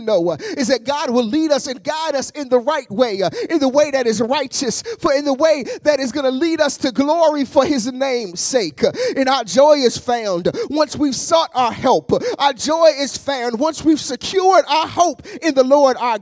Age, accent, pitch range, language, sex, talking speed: 30-49, American, 265-335 Hz, English, male, 225 wpm